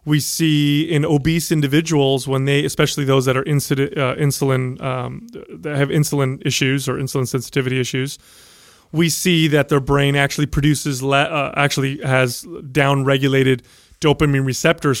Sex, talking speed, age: male, 150 wpm, 30-49